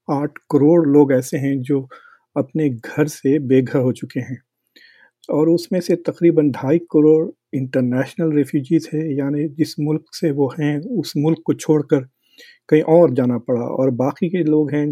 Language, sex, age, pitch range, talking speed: Hindi, male, 50-69, 135-165 Hz, 165 wpm